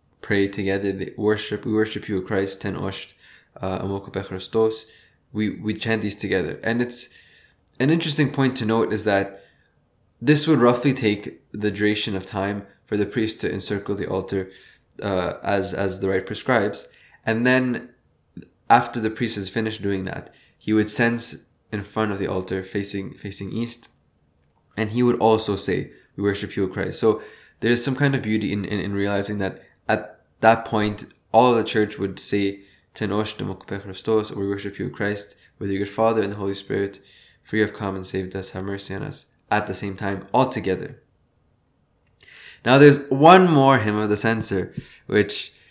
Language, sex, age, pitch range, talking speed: English, male, 20-39, 100-115 Hz, 175 wpm